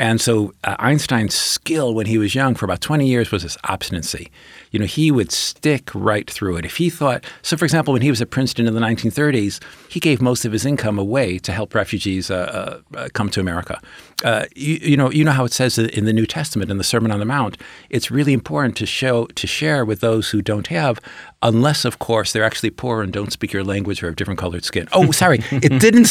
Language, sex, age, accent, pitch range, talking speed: English, male, 50-69, American, 105-145 Hz, 240 wpm